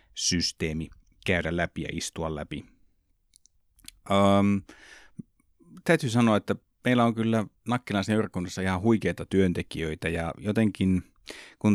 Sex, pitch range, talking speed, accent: male, 85-105 Hz, 105 wpm, native